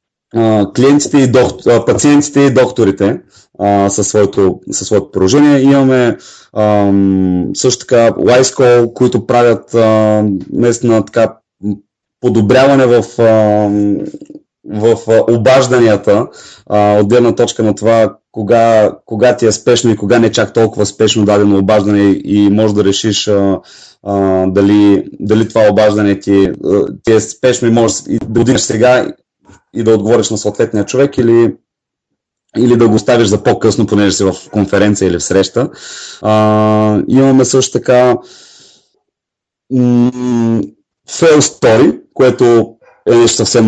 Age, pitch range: 30-49, 105-135 Hz